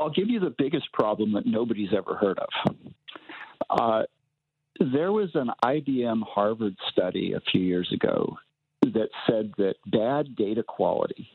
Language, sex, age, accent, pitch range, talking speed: English, male, 50-69, American, 105-140 Hz, 150 wpm